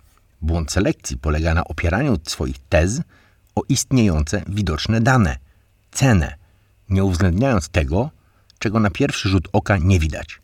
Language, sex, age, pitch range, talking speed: Polish, male, 60-79, 75-95 Hz, 125 wpm